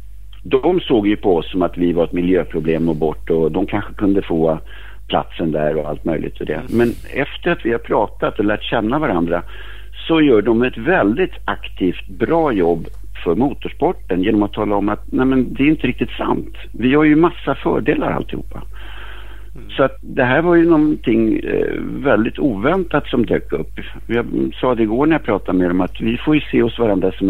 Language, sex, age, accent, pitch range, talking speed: Swedish, male, 60-79, Norwegian, 95-135 Hz, 200 wpm